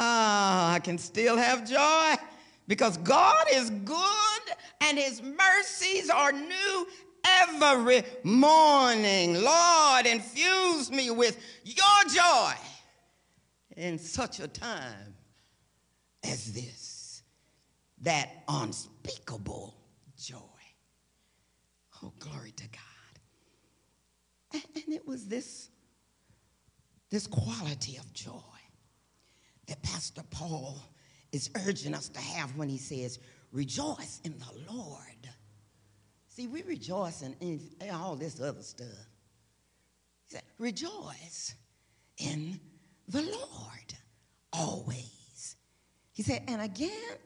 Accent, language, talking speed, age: American, English, 100 wpm, 50-69